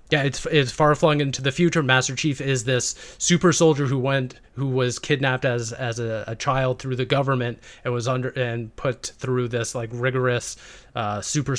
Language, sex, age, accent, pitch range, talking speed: English, male, 30-49, American, 120-140 Hz, 195 wpm